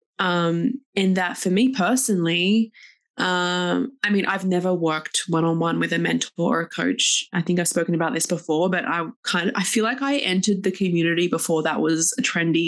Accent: Australian